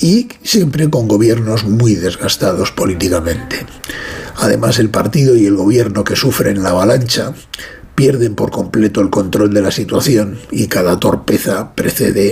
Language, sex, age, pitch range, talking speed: Spanish, male, 60-79, 100-140 Hz, 140 wpm